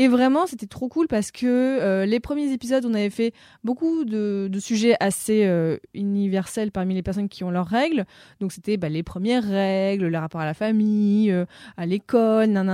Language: French